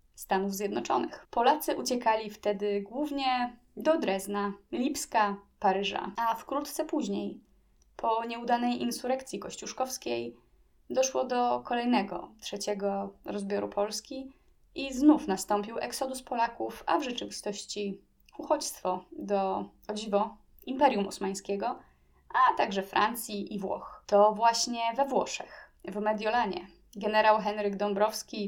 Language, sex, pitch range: Polish, female, 200-255 Hz